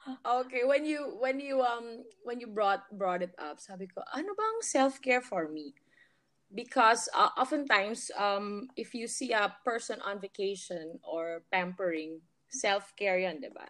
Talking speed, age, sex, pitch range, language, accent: 160 wpm, 20-39, female, 195-265 Hz, English, Filipino